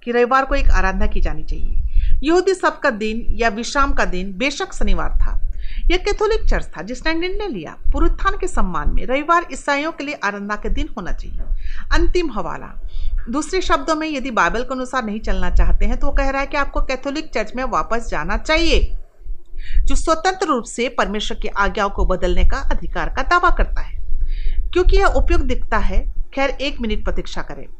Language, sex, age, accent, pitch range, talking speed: Hindi, female, 40-59, native, 195-315 Hz, 125 wpm